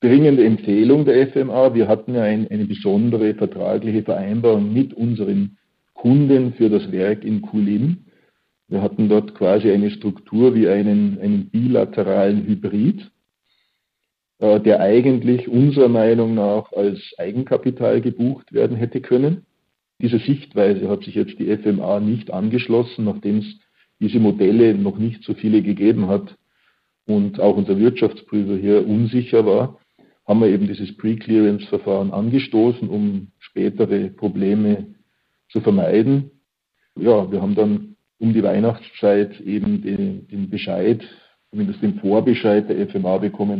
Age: 50-69